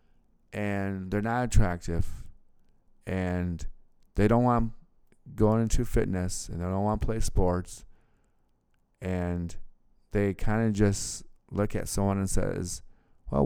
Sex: male